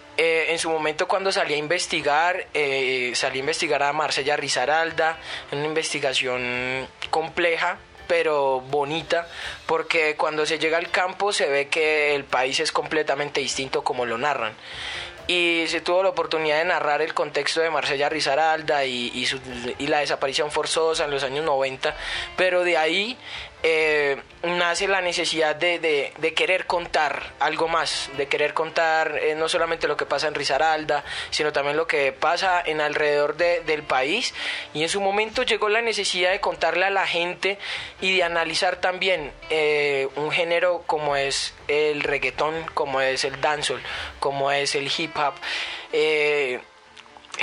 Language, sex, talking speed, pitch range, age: Spanish, male, 160 wpm, 145-180 Hz, 20-39